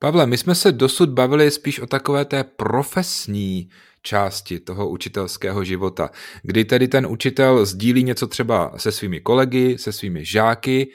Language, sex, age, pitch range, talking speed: Czech, male, 30-49, 105-130 Hz, 155 wpm